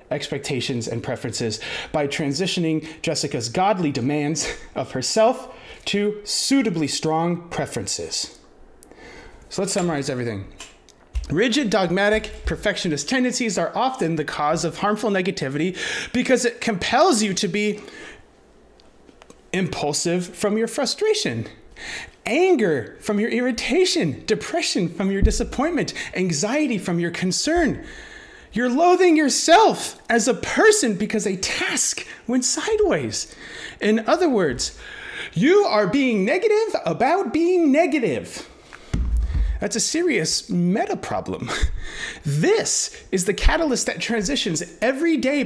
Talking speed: 110 wpm